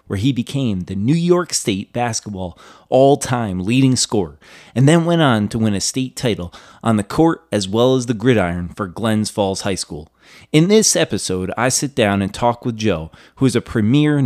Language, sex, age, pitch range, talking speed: English, male, 30-49, 105-140 Hz, 200 wpm